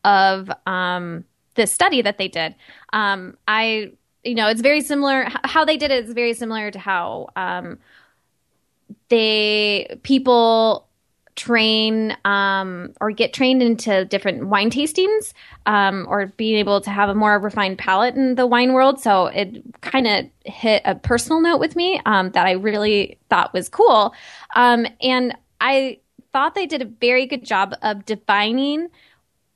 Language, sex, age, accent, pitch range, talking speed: English, female, 10-29, American, 205-250 Hz, 160 wpm